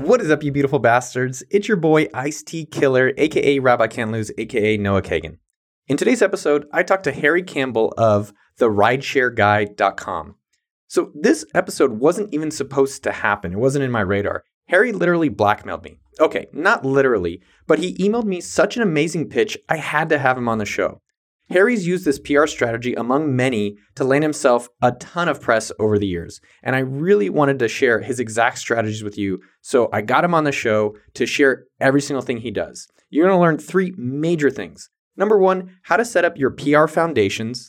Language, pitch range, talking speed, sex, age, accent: English, 115-160 Hz, 195 wpm, male, 20-39, American